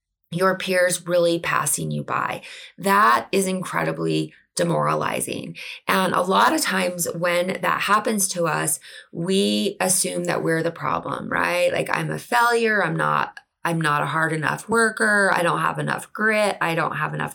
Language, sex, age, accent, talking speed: English, female, 20-39, American, 165 wpm